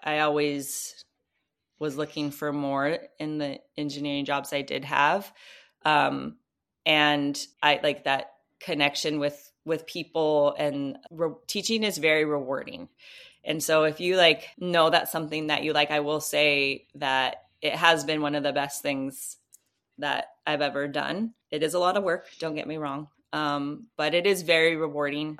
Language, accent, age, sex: English, American, 20-39, female